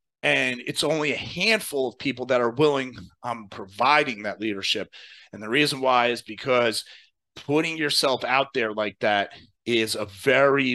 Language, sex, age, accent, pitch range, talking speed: English, male, 30-49, American, 120-150 Hz, 160 wpm